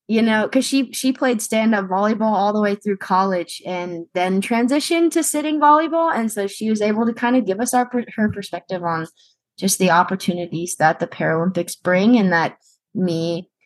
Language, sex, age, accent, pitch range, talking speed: English, female, 20-39, American, 165-195 Hz, 195 wpm